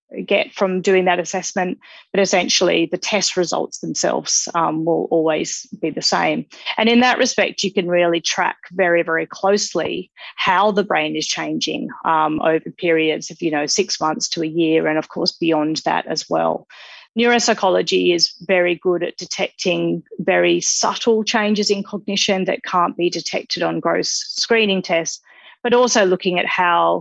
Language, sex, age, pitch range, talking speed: English, female, 30-49, 170-205 Hz, 160 wpm